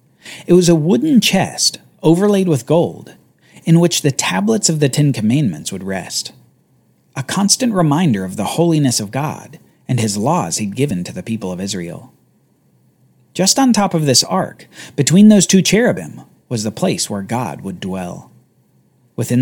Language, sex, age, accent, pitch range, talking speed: English, male, 40-59, American, 110-180 Hz, 165 wpm